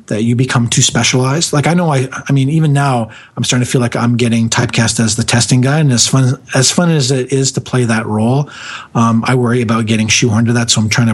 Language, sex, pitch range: English, male, 110-130 Hz